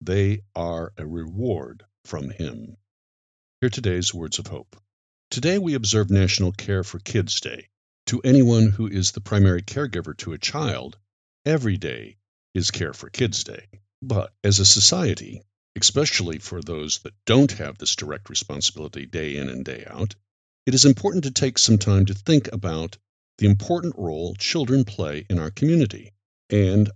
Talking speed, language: 165 wpm, English